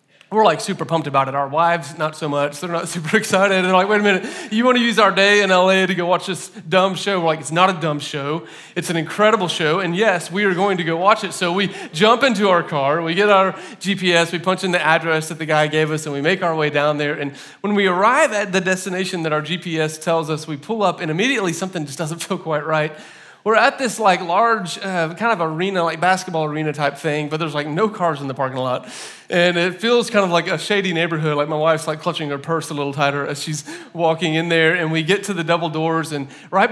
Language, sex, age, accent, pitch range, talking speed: English, male, 30-49, American, 160-205 Hz, 260 wpm